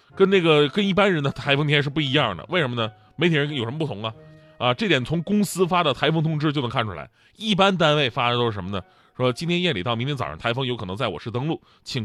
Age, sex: 20-39, male